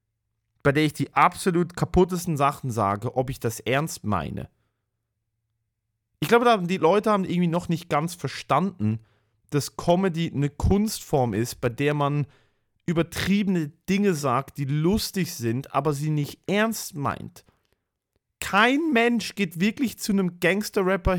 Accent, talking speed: German, 140 wpm